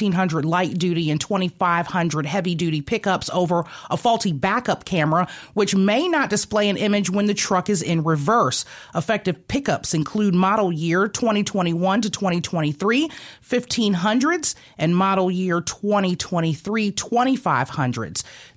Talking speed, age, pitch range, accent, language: 115 wpm, 30-49, 170-215 Hz, American, English